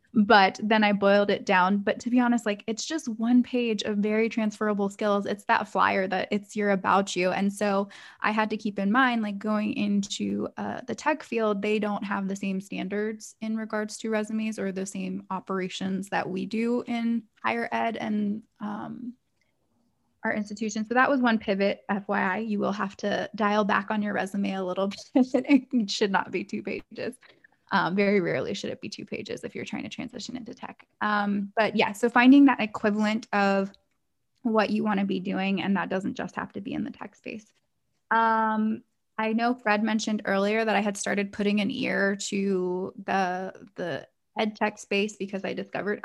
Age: 20-39